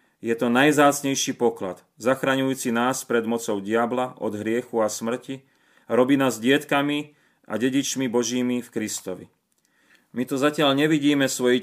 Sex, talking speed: male, 135 wpm